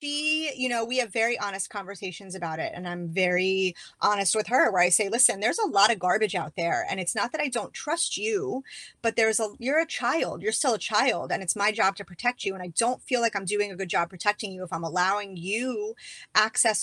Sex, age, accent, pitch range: female, 30-49, American, 190-225 Hz